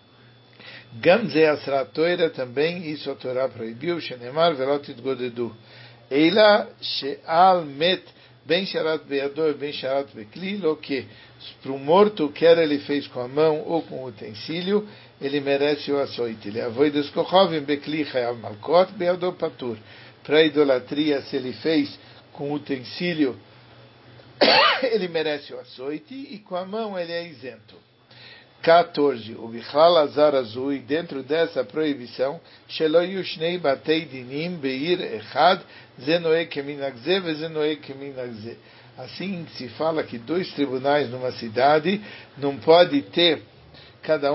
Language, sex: English, male